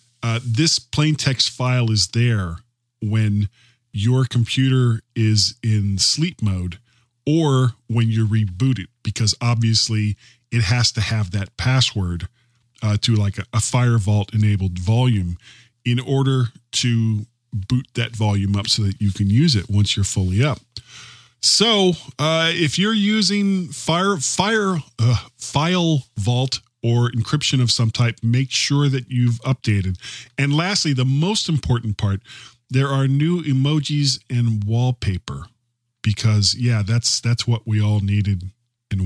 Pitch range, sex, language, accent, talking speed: 110-140 Hz, male, English, American, 145 wpm